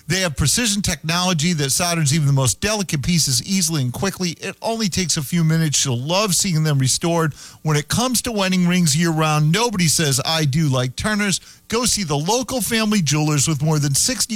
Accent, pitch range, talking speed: American, 125-180 Hz, 205 wpm